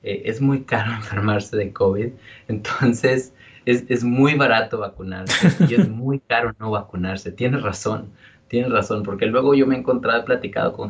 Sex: male